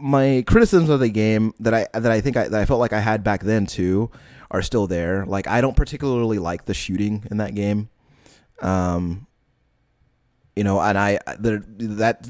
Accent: American